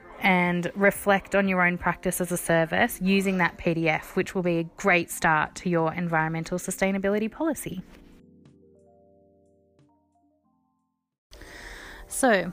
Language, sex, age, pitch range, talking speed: English, female, 20-39, 170-200 Hz, 115 wpm